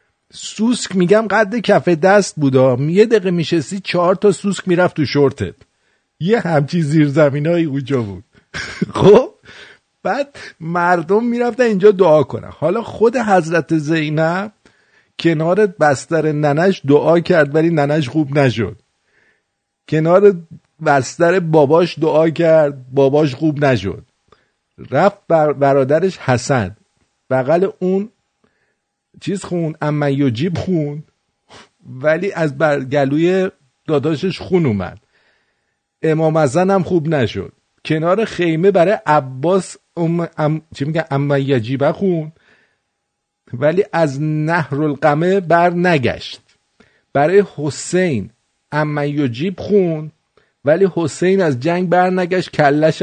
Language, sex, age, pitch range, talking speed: English, male, 50-69, 145-185 Hz, 110 wpm